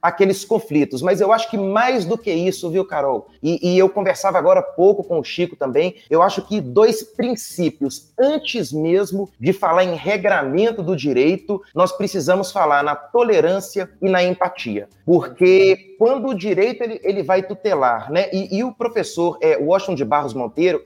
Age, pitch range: 30-49, 175-215 Hz